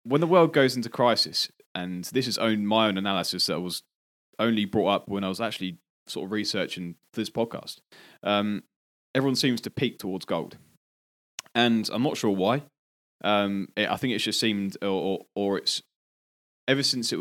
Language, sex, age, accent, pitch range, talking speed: English, male, 20-39, British, 90-120 Hz, 185 wpm